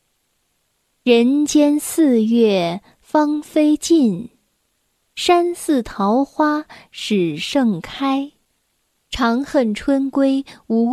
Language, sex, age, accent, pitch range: Chinese, female, 10-29, native, 220-300 Hz